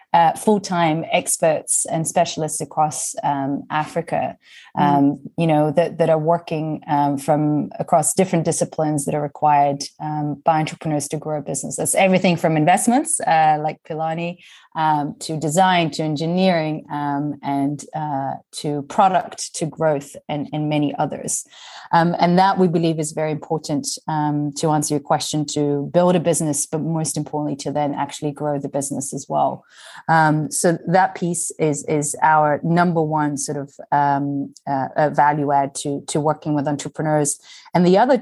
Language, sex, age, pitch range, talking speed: English, female, 30-49, 145-165 Hz, 165 wpm